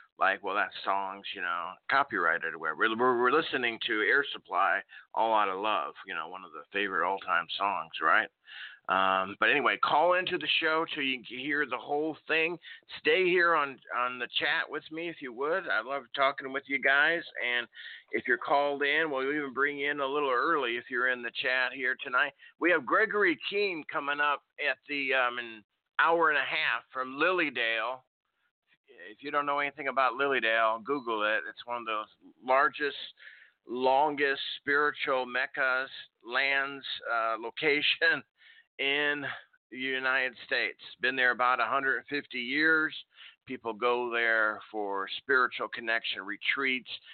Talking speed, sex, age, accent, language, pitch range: 165 wpm, male, 50-69, American, English, 120-155 Hz